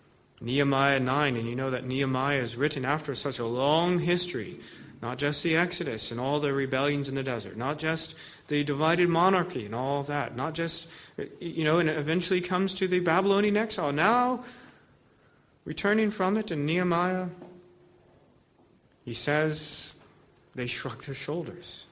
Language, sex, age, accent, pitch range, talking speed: English, male, 40-59, American, 140-205 Hz, 155 wpm